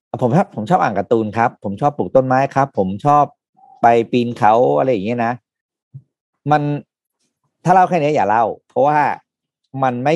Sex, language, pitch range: male, Thai, 110-150 Hz